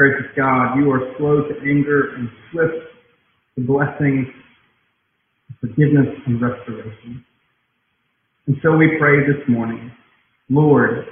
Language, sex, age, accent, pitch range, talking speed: English, male, 40-59, American, 125-155 Hz, 115 wpm